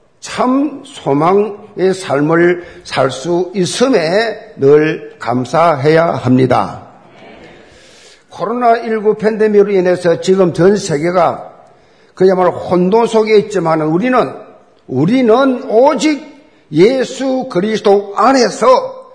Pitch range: 180-255 Hz